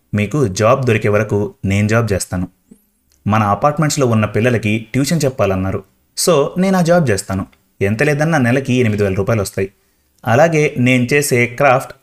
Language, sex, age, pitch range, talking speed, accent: Telugu, male, 30-49, 105-140 Hz, 145 wpm, native